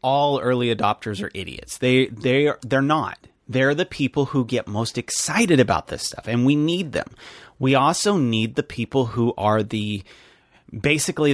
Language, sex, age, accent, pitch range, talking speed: English, male, 30-49, American, 115-140 Hz, 180 wpm